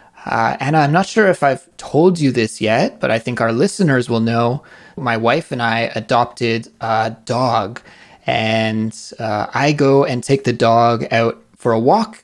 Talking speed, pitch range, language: 180 wpm, 115-150 Hz, English